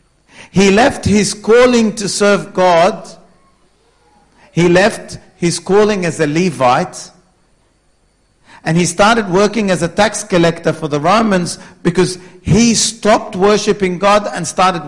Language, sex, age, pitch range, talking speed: English, male, 50-69, 130-185 Hz, 130 wpm